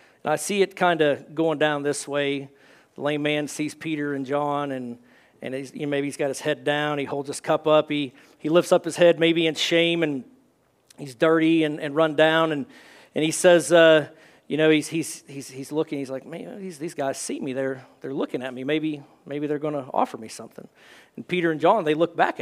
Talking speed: 235 wpm